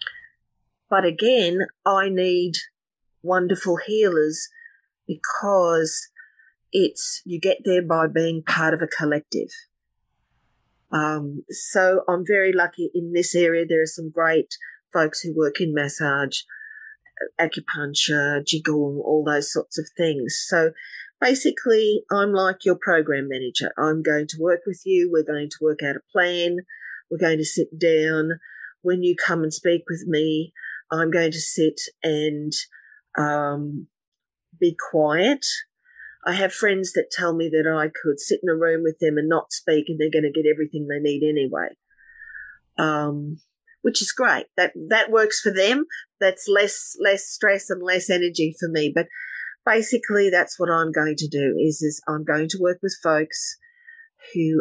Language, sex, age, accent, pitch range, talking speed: English, female, 40-59, Australian, 155-195 Hz, 155 wpm